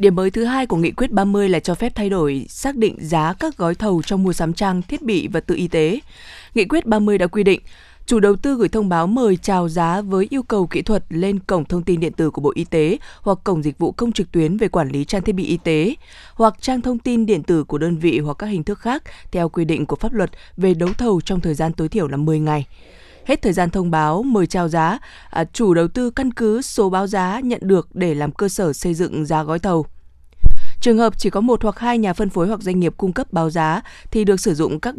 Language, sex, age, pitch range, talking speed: Vietnamese, female, 20-39, 165-215 Hz, 265 wpm